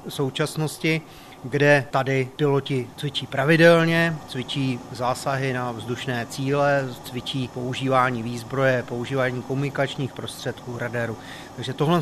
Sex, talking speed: male, 100 wpm